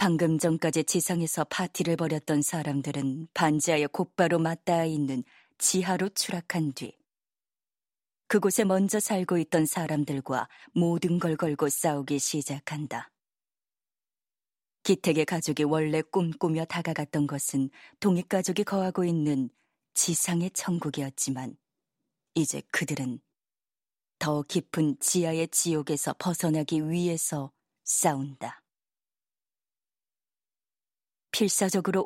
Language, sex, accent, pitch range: Korean, female, native, 150-180 Hz